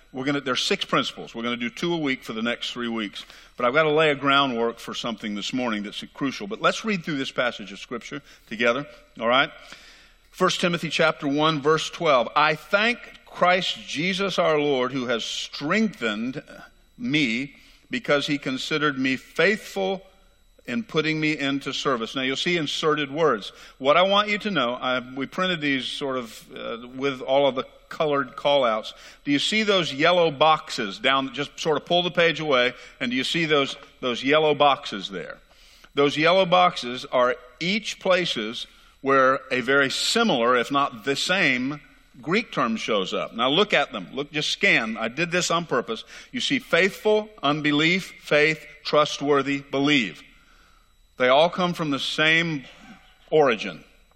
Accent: American